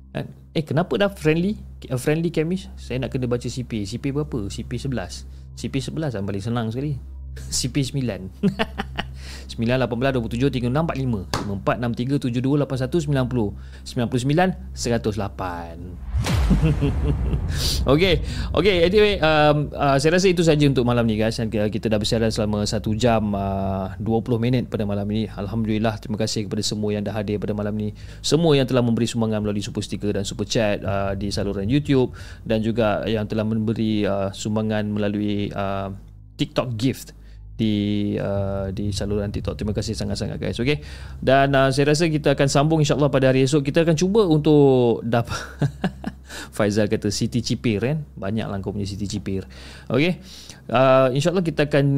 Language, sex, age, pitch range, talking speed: Malay, male, 30-49, 100-130 Hz, 165 wpm